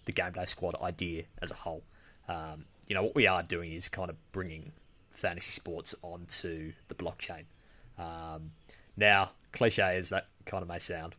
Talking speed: 170 wpm